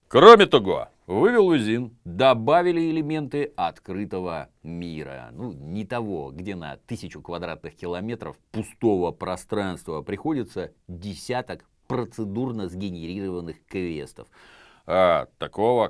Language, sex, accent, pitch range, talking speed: Russian, male, native, 85-120 Hz, 90 wpm